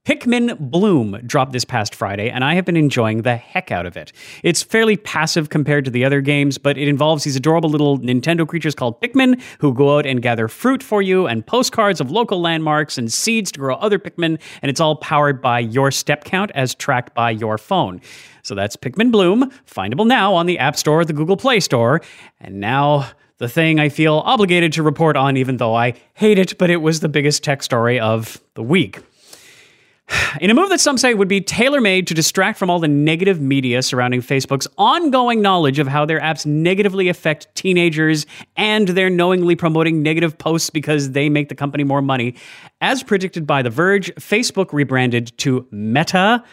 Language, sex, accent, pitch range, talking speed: English, male, American, 130-180 Hz, 200 wpm